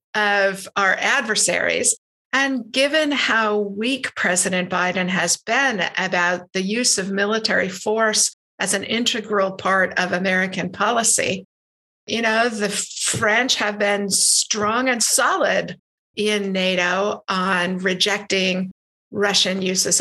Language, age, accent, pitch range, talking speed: English, 50-69, American, 180-220 Hz, 115 wpm